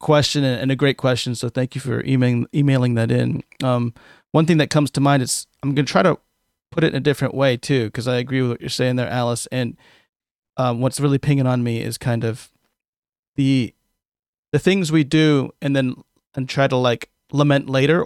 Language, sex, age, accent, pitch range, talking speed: English, male, 30-49, American, 125-150 Hz, 215 wpm